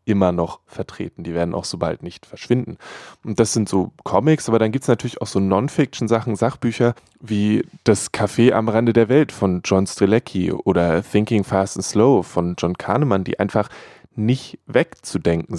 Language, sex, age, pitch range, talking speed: German, male, 20-39, 95-125 Hz, 175 wpm